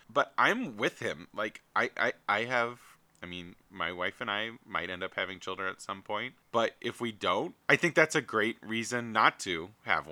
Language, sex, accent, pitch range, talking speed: English, male, American, 95-125 Hz, 215 wpm